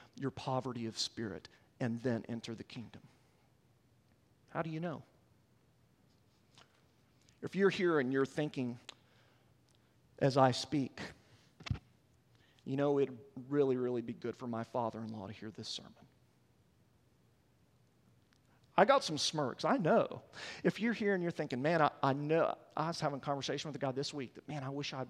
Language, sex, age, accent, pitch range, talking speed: English, male, 40-59, American, 120-160 Hz, 165 wpm